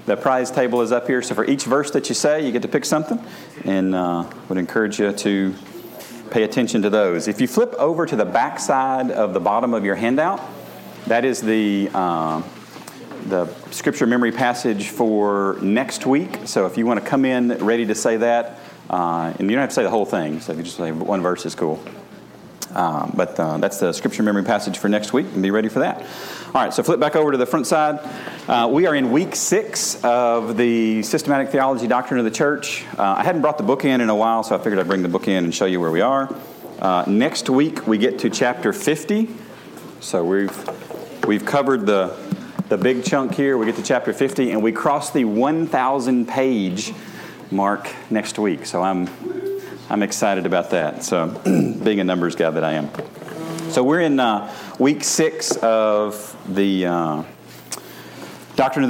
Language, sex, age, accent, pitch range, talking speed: English, male, 40-59, American, 100-130 Hz, 205 wpm